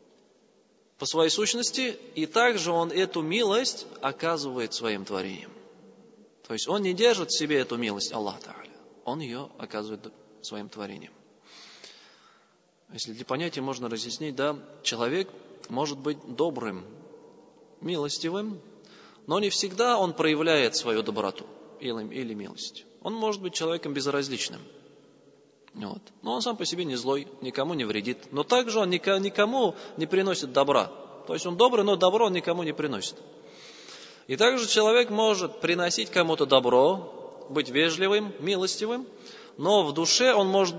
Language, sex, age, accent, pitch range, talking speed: Russian, male, 20-39, native, 135-205 Hz, 135 wpm